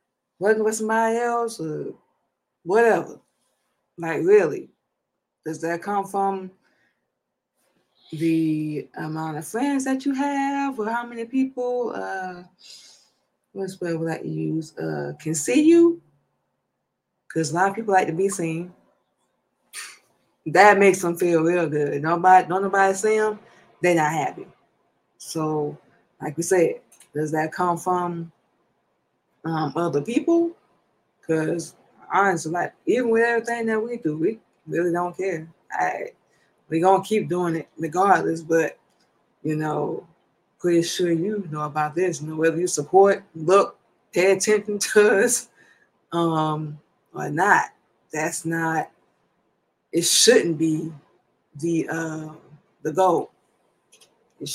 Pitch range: 160-205 Hz